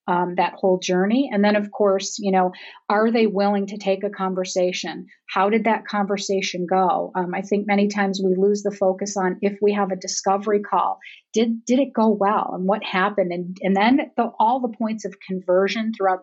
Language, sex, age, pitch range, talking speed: English, female, 40-59, 185-215 Hz, 205 wpm